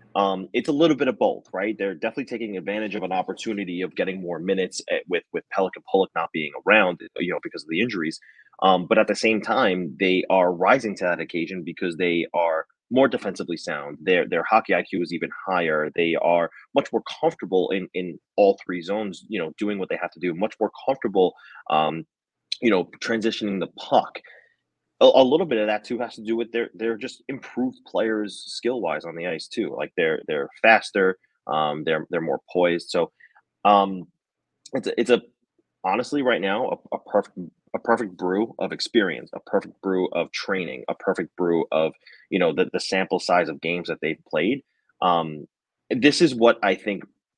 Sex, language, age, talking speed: male, English, 30-49, 200 wpm